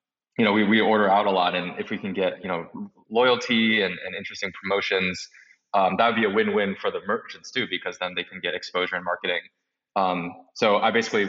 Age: 20-39